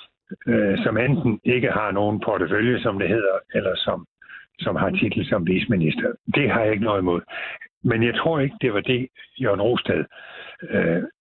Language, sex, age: Danish, male, 60-79